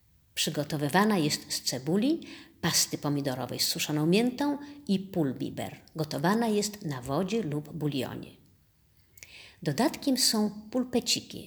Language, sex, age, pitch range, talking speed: Polish, female, 50-69, 140-205 Hz, 105 wpm